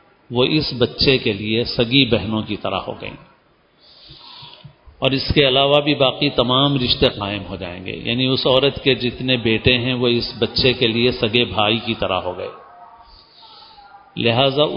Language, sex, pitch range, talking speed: Urdu, male, 115-145 Hz, 170 wpm